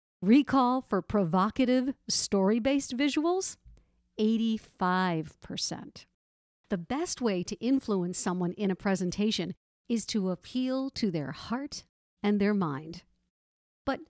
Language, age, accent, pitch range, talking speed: English, 50-69, American, 180-240 Hz, 105 wpm